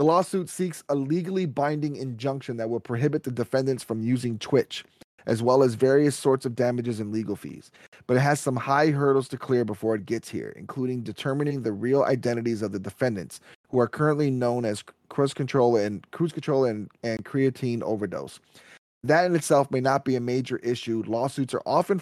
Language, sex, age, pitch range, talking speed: English, male, 20-39, 120-145 Hz, 195 wpm